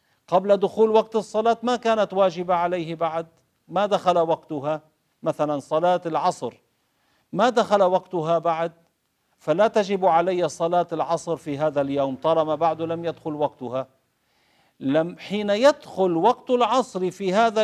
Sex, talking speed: male, 135 wpm